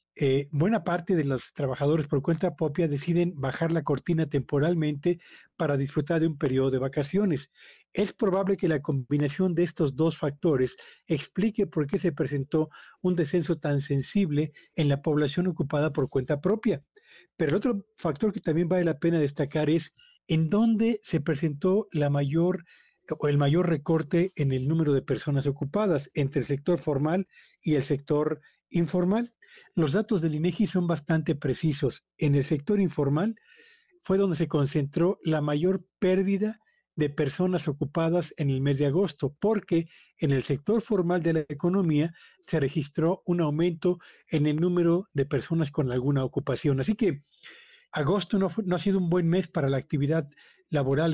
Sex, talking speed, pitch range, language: male, 165 wpm, 145-180 Hz, Spanish